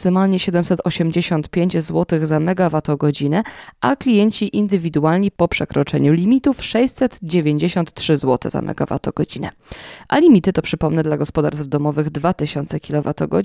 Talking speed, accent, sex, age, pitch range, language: 105 wpm, native, female, 20-39, 155-205 Hz, Polish